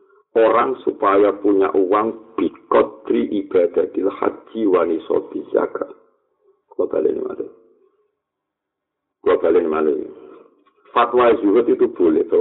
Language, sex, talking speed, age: Indonesian, male, 100 wpm, 50-69